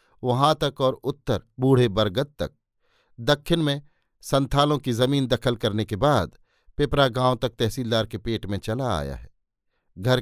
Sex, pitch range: male, 110-135 Hz